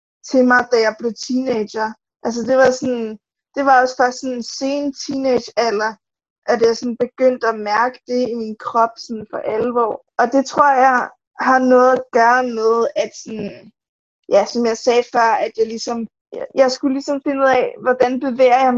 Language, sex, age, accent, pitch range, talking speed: Danish, female, 20-39, native, 235-265 Hz, 190 wpm